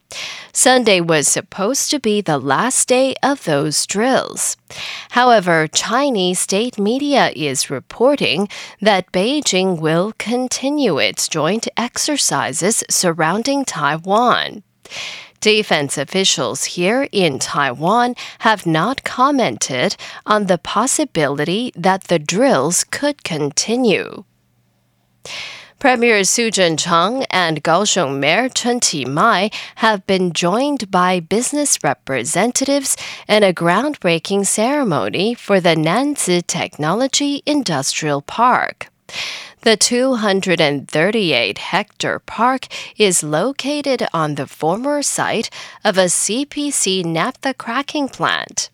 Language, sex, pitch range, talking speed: English, female, 175-255 Hz, 100 wpm